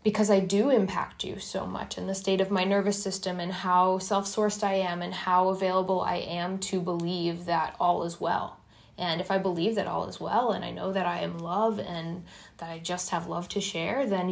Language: English